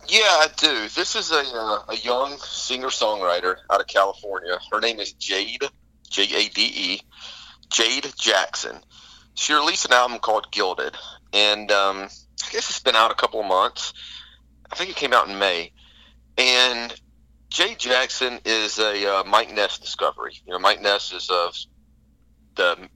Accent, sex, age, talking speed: American, male, 40-59, 165 wpm